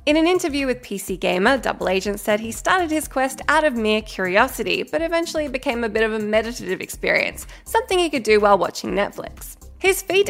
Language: English